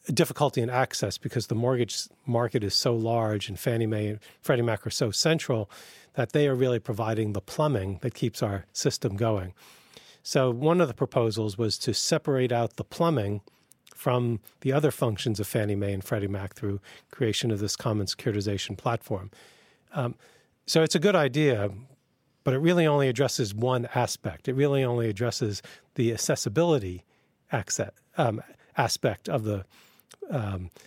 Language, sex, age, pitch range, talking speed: English, male, 40-59, 105-135 Hz, 160 wpm